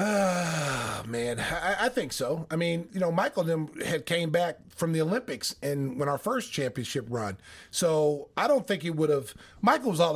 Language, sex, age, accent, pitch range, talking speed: English, male, 30-49, American, 145-185 Hz, 195 wpm